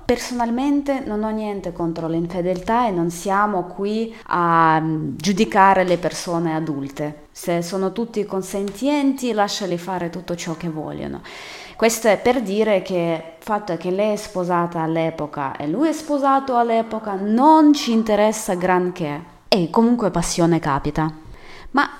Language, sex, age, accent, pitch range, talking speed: Italian, female, 20-39, native, 170-235 Hz, 140 wpm